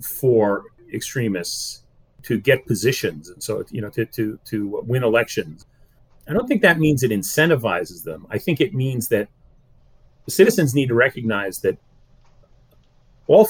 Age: 40-59